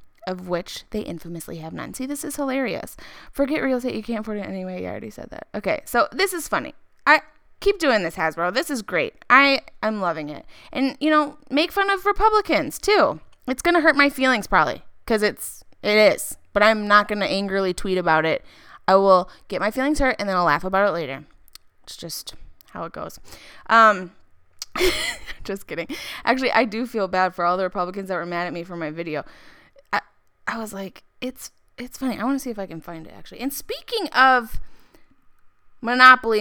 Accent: American